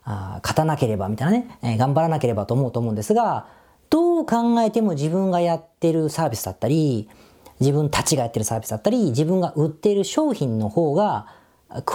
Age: 40-59